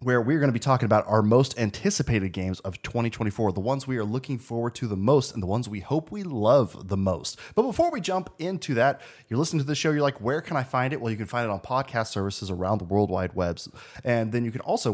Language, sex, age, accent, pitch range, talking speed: English, male, 20-39, American, 110-165 Hz, 270 wpm